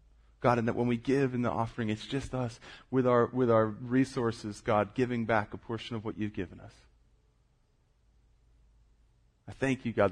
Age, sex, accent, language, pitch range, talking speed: 30-49, male, American, English, 95-115 Hz, 185 wpm